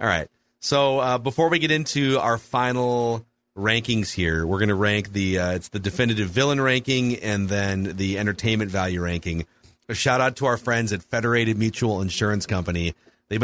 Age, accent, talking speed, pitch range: 30-49, American, 180 wpm, 95-120 Hz